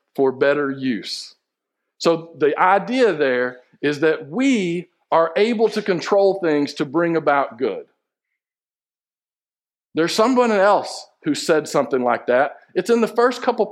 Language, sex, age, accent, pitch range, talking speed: English, male, 50-69, American, 135-200 Hz, 140 wpm